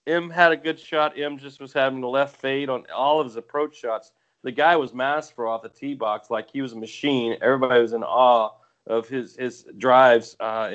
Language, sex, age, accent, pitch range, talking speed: English, male, 40-59, American, 115-130 Hz, 230 wpm